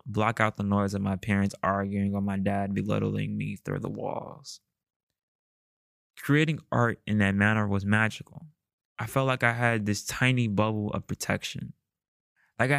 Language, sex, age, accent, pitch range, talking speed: English, male, 20-39, American, 100-125 Hz, 160 wpm